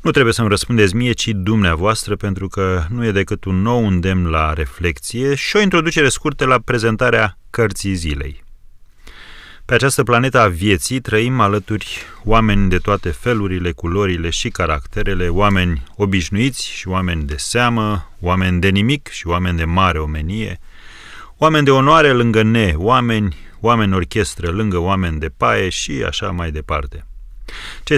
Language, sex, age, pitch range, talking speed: Romanian, male, 30-49, 85-115 Hz, 150 wpm